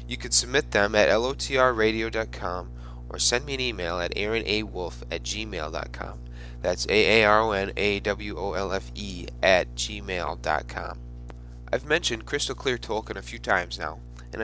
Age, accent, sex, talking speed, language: 20-39, American, male, 120 wpm, English